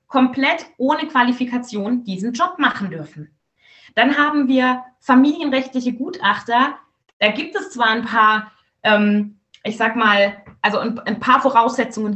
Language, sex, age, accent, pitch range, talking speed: German, female, 20-39, German, 220-290 Hz, 130 wpm